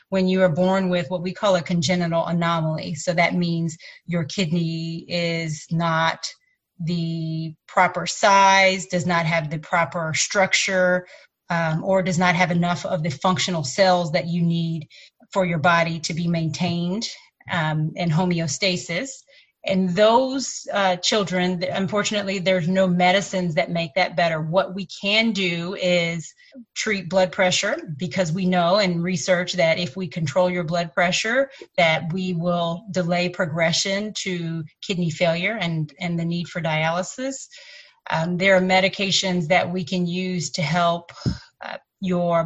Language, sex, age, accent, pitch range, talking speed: English, female, 30-49, American, 170-190 Hz, 150 wpm